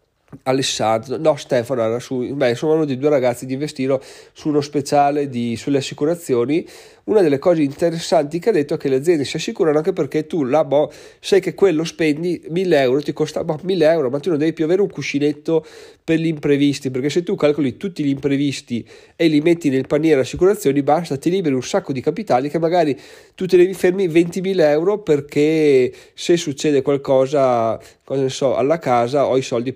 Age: 30-49